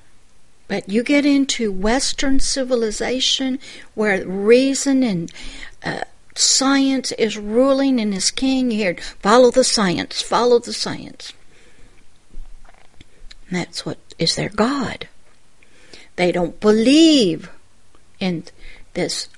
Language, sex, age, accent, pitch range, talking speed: English, female, 60-79, American, 195-270 Hz, 105 wpm